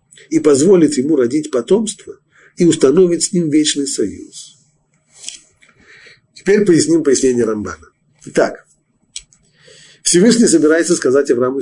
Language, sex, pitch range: Russian, male, 130-215 Hz